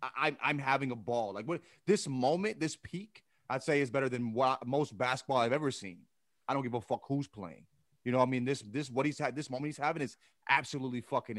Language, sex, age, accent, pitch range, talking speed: English, male, 30-49, American, 120-160 Hz, 240 wpm